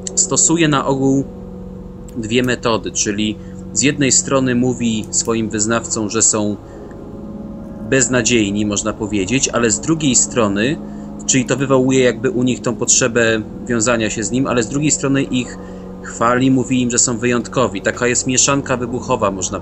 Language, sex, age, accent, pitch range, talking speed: Polish, male, 30-49, native, 105-125 Hz, 150 wpm